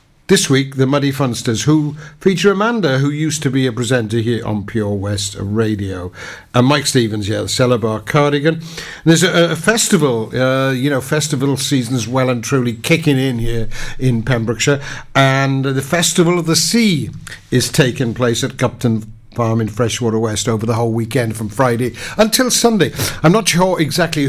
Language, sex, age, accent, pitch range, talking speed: English, male, 60-79, British, 115-145 Hz, 175 wpm